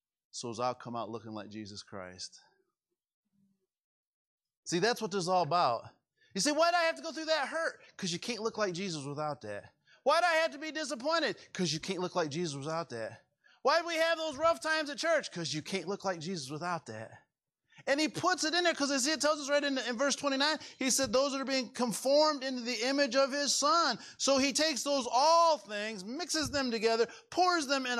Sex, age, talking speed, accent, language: male, 30-49, 230 wpm, American, English